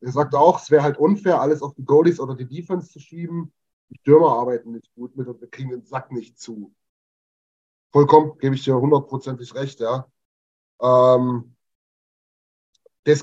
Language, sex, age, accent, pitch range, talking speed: German, male, 30-49, German, 120-155 Hz, 170 wpm